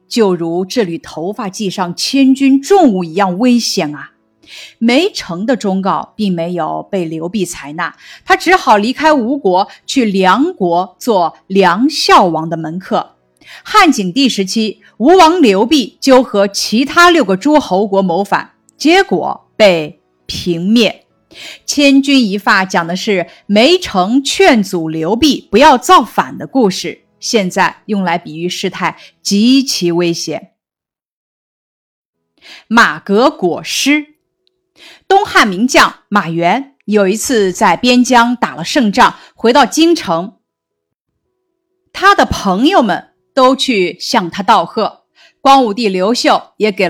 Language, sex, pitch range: Chinese, female, 180-275 Hz